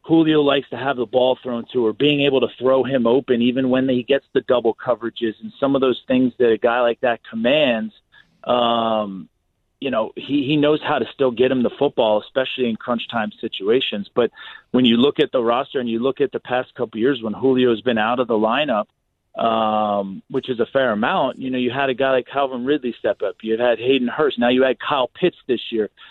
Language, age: English, 40-59